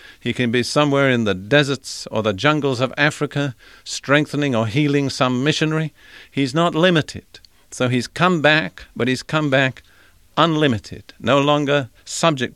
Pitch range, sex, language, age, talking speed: 115-150 Hz, male, English, 50-69, 155 wpm